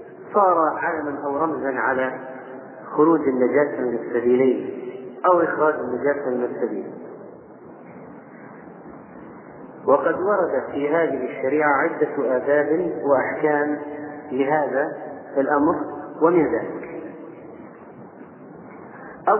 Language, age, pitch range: Arabic, 40-59, 135-160 Hz